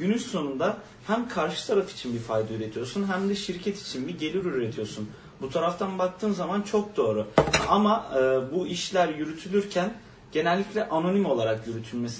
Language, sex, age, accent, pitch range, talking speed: Turkish, male, 40-59, native, 140-195 Hz, 150 wpm